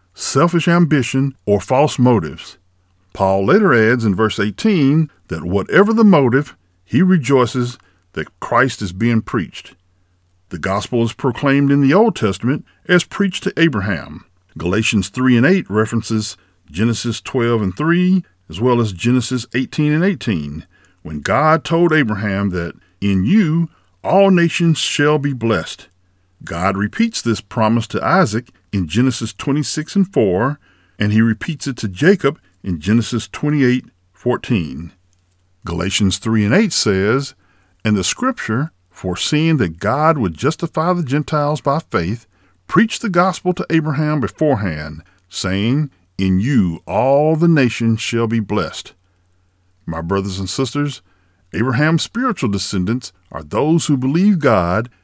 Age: 50-69